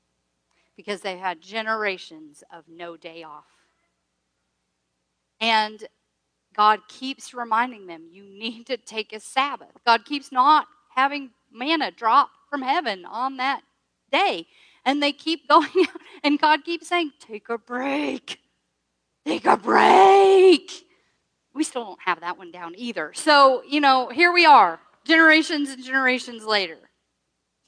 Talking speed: 135 wpm